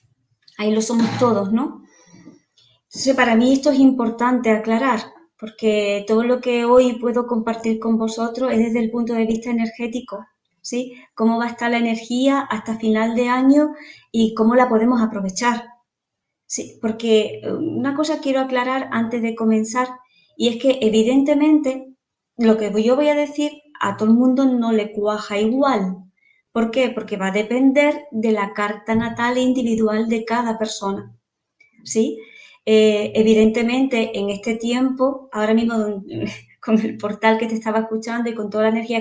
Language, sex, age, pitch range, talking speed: Spanish, female, 20-39, 220-250 Hz, 160 wpm